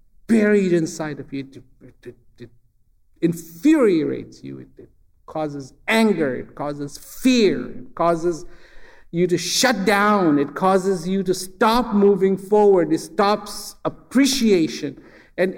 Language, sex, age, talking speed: English, male, 50-69, 125 wpm